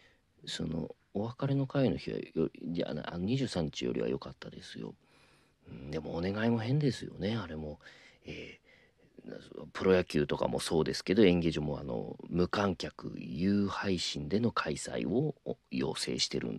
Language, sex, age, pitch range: Japanese, male, 40-59, 80-100 Hz